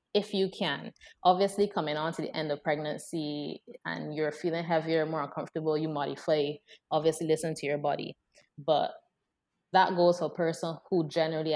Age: 20-39